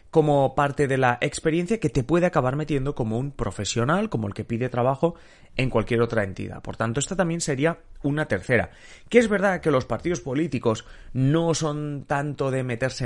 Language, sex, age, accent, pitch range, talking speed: Spanish, male, 30-49, Spanish, 110-150 Hz, 190 wpm